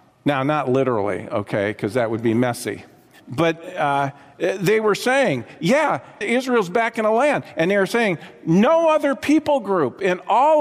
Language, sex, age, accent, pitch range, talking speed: English, male, 50-69, American, 155-235 Hz, 170 wpm